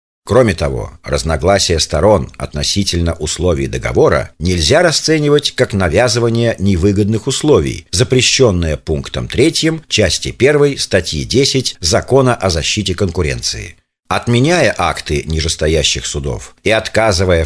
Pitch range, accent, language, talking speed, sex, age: 85-130 Hz, native, Russian, 105 wpm, male, 50-69